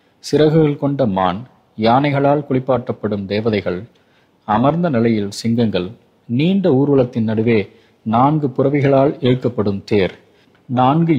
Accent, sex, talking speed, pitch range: native, male, 90 wpm, 110-130 Hz